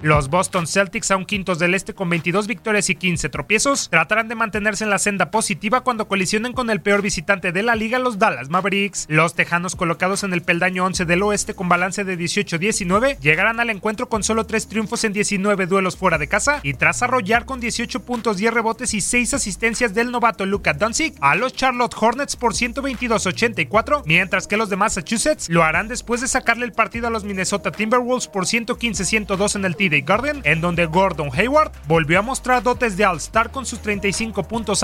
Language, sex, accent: Spanish, male, Mexican